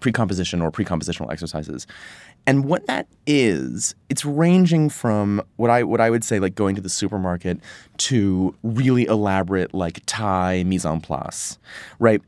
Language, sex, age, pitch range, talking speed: English, male, 30-49, 90-120 Hz, 150 wpm